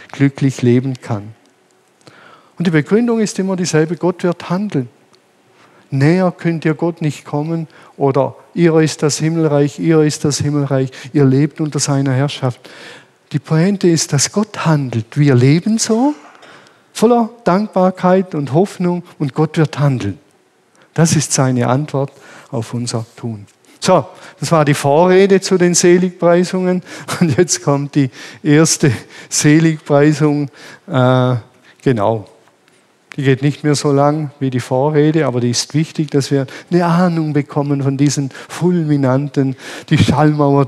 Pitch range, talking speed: 135-170 Hz, 140 wpm